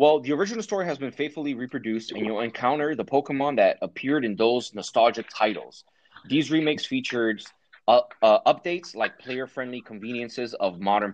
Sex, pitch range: male, 105-140 Hz